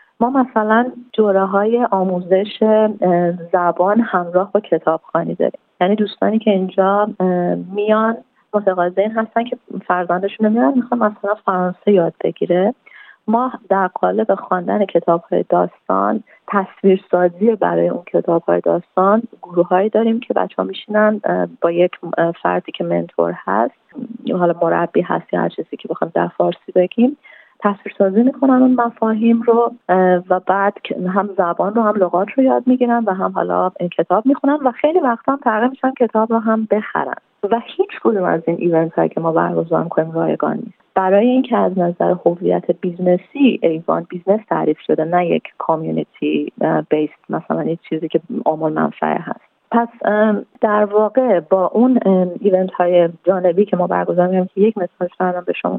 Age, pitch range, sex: 30-49, 175-225 Hz, female